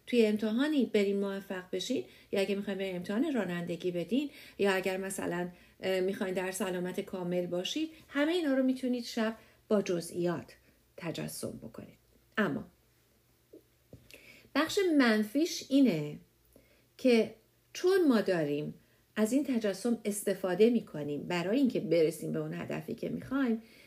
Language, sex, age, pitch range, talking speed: English, female, 50-69, 185-245 Hz, 125 wpm